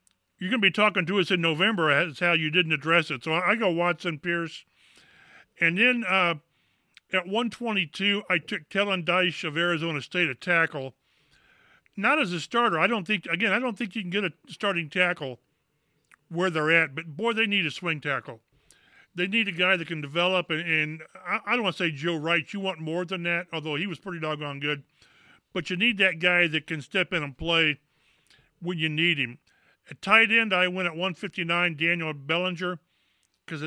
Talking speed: 205 wpm